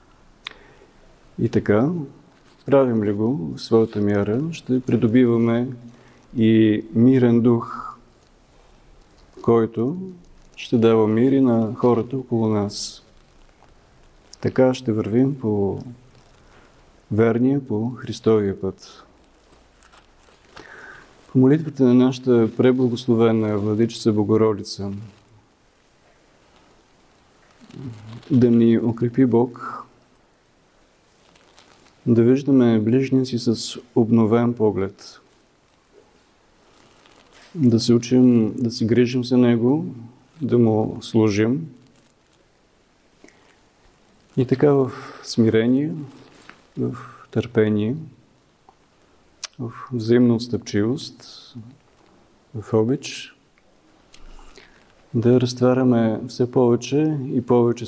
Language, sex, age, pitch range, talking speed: Bulgarian, male, 40-59, 110-130 Hz, 80 wpm